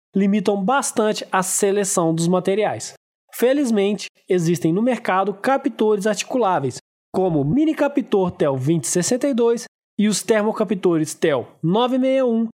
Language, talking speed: Portuguese, 105 wpm